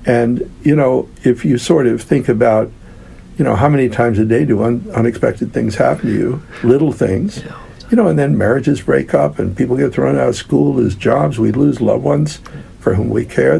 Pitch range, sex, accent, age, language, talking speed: 105-130 Hz, male, American, 60-79, English, 215 wpm